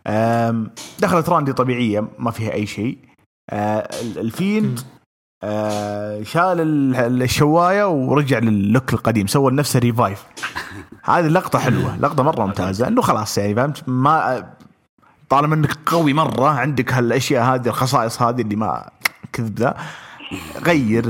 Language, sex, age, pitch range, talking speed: English, male, 30-49, 115-150 Hz, 120 wpm